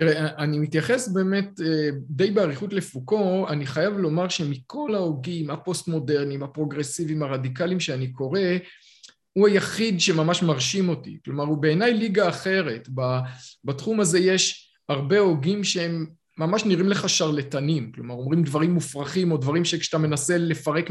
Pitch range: 145-190 Hz